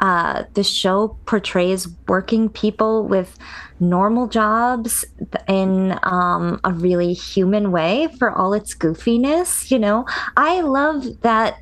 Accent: American